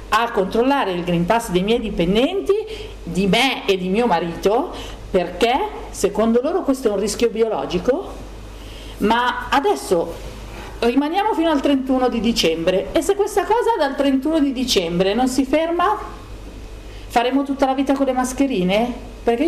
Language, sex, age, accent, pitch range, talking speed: Italian, female, 40-59, native, 200-280 Hz, 150 wpm